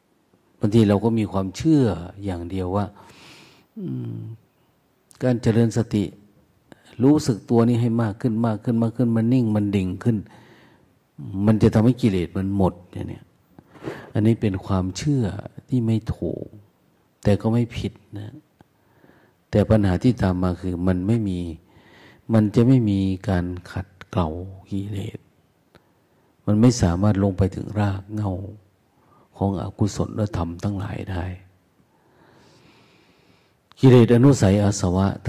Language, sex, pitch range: Thai, male, 95-115 Hz